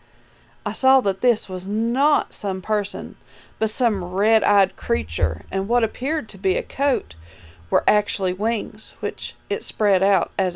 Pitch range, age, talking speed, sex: 190-255 Hz, 40-59, 155 wpm, female